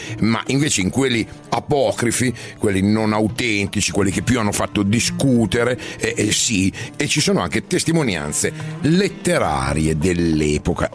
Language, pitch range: Italian, 90-125 Hz